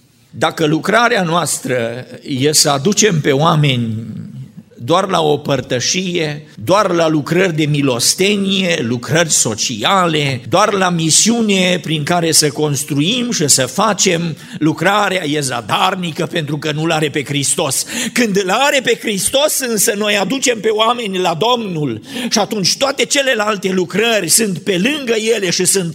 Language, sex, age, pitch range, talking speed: Romanian, male, 50-69, 120-195 Hz, 140 wpm